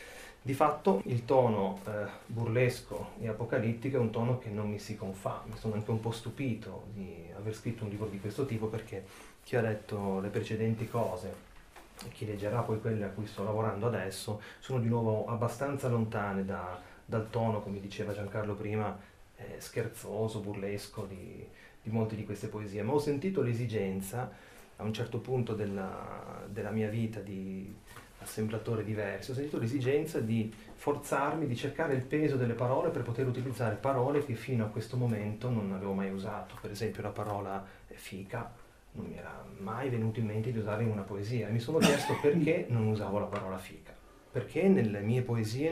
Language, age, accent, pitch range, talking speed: Italian, 30-49, native, 105-125 Hz, 180 wpm